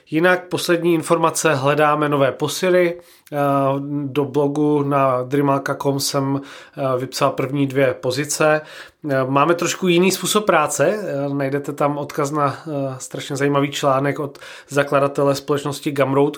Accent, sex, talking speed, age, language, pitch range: native, male, 115 wpm, 30-49, Czech, 140-165 Hz